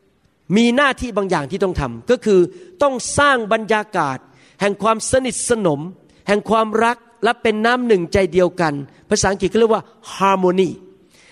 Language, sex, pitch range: Thai, male, 180-230 Hz